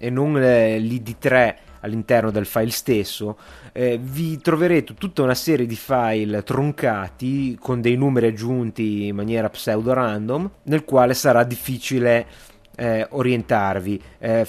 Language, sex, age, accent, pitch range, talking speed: Italian, male, 30-49, native, 105-125 Hz, 135 wpm